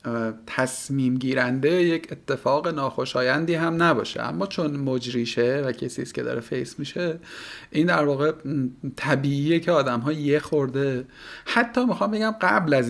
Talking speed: 145 wpm